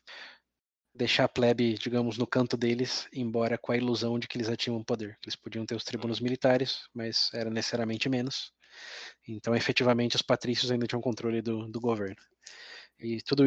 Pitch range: 115-125 Hz